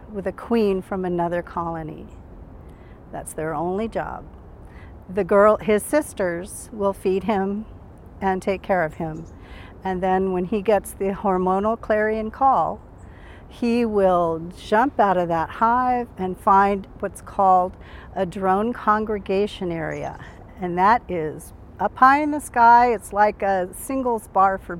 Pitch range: 165-215 Hz